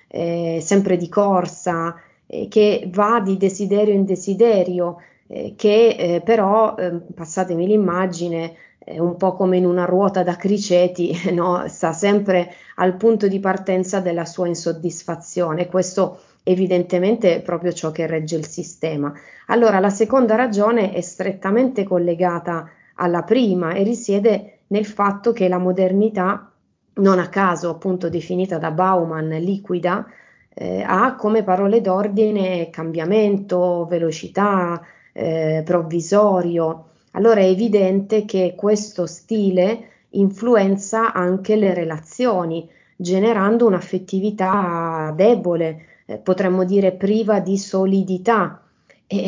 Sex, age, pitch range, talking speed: female, 20-39, 175-205 Hz, 120 wpm